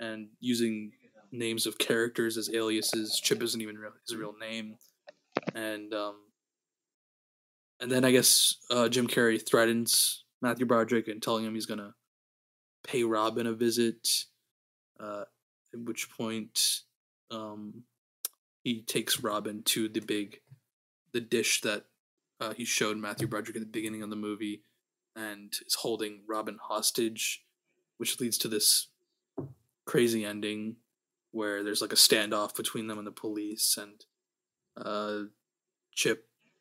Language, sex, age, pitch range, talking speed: English, male, 20-39, 110-120 Hz, 140 wpm